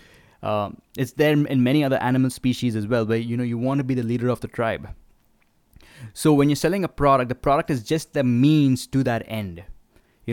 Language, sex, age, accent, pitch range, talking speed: English, male, 20-39, Indian, 115-135 Hz, 220 wpm